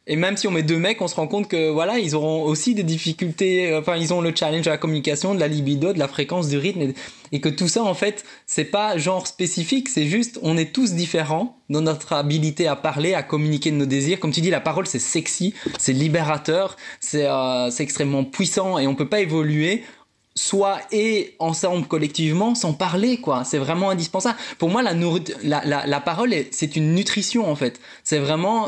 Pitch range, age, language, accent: 145-190 Hz, 20-39, French, French